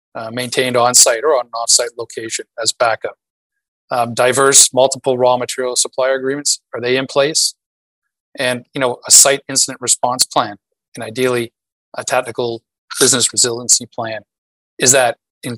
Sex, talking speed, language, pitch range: male, 150 wpm, English, 115-135 Hz